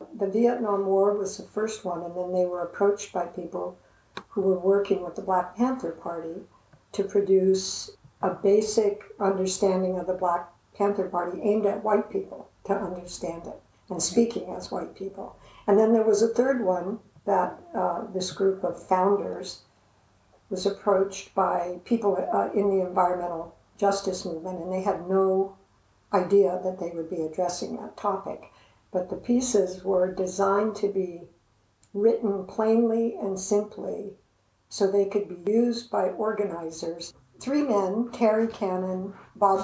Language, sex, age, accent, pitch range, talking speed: English, female, 60-79, American, 180-210 Hz, 155 wpm